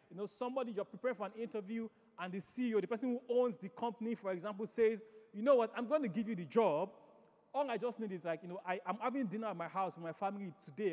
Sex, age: male, 30-49